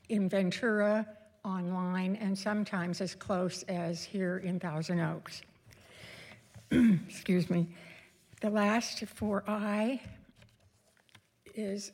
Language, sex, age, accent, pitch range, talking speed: English, female, 60-79, American, 175-210 Hz, 95 wpm